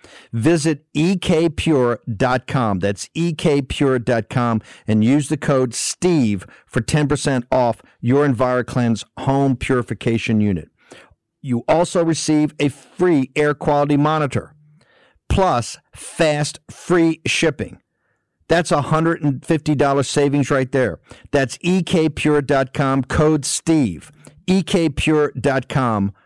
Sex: male